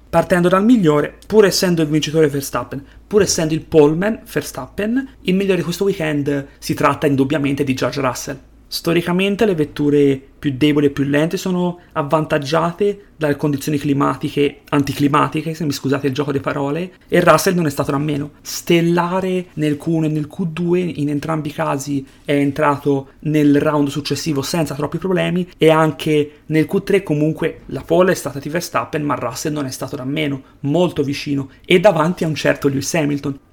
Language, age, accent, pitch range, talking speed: Italian, 30-49, native, 145-170 Hz, 175 wpm